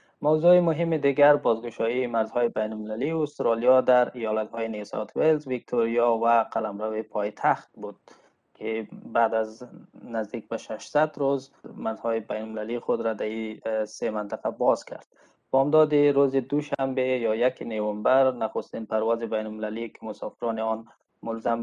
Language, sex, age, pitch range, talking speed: Persian, male, 20-39, 110-130 Hz, 145 wpm